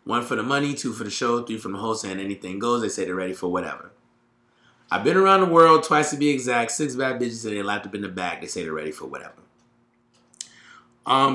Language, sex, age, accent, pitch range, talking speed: English, male, 30-49, American, 130-165 Hz, 250 wpm